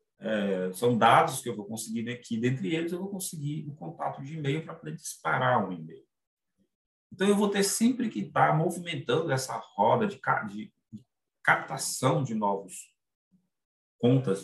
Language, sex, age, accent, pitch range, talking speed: Portuguese, male, 40-59, Brazilian, 130-190 Hz, 155 wpm